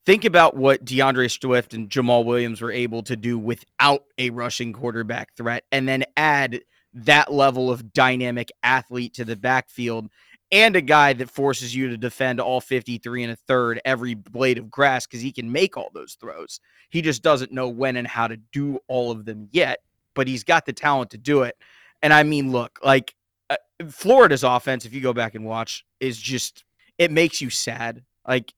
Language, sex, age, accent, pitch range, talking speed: English, male, 30-49, American, 115-135 Hz, 195 wpm